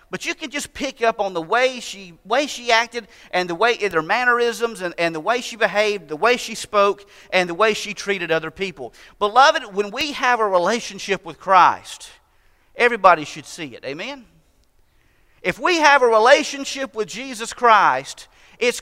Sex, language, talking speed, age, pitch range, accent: male, English, 180 wpm, 40-59, 200-260 Hz, American